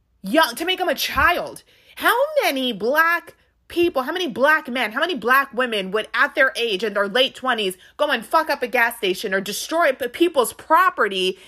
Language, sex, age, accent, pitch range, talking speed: English, female, 30-49, American, 200-275 Hz, 195 wpm